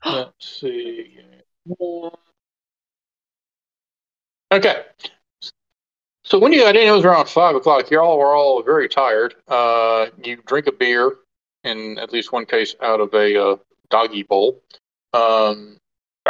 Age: 40-59